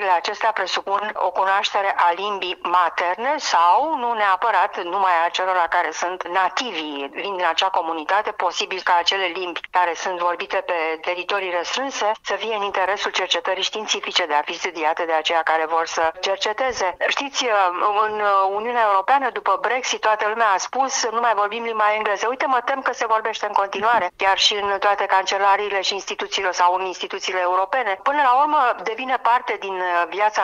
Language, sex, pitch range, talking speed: English, female, 175-215 Hz, 170 wpm